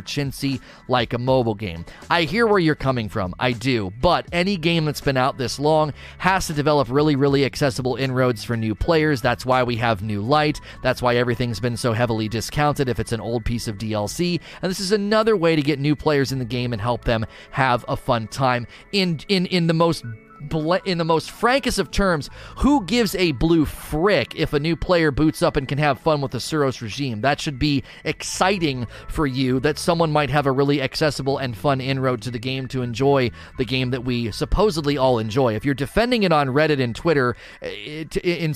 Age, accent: 30-49, American